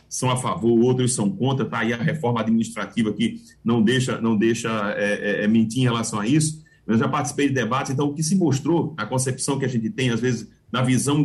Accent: Brazilian